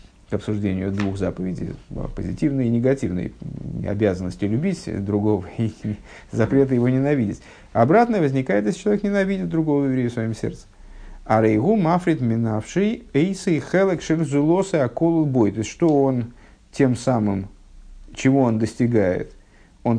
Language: Russian